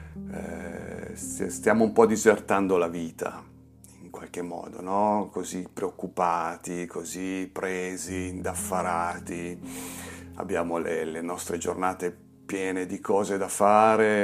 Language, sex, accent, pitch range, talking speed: Italian, male, native, 95-110 Hz, 105 wpm